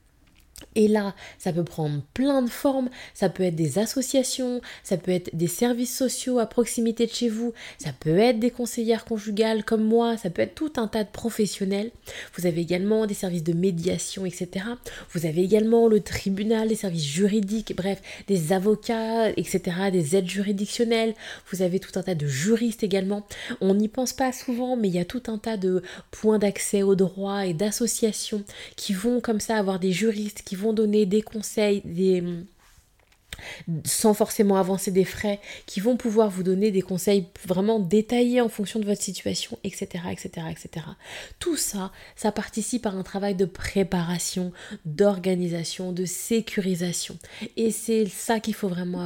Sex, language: female, French